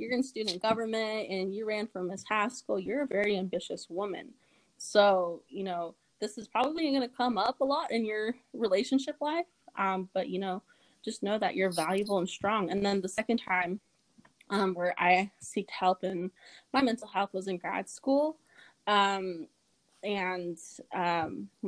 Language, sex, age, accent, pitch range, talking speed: English, female, 20-39, American, 180-215 Hz, 175 wpm